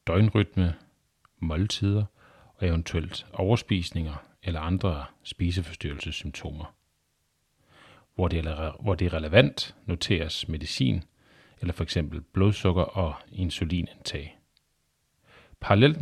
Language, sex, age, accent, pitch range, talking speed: Danish, male, 40-59, native, 85-105 Hz, 75 wpm